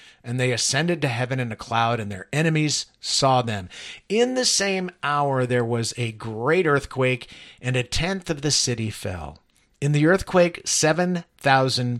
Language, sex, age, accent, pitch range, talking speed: English, male, 50-69, American, 115-160 Hz, 165 wpm